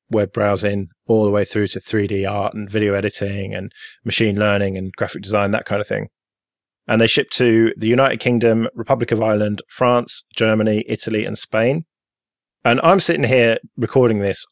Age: 20-39